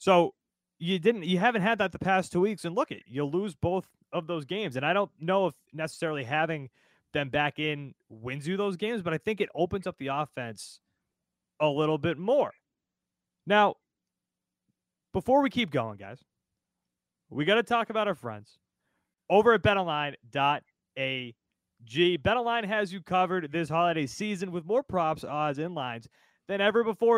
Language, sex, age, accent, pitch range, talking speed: English, male, 20-39, American, 160-210 Hz, 175 wpm